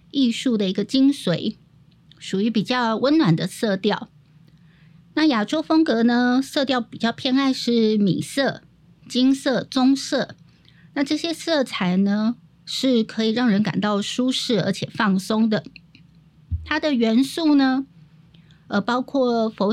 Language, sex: Chinese, female